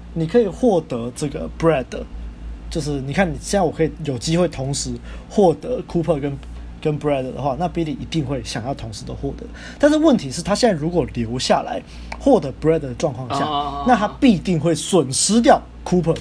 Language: Chinese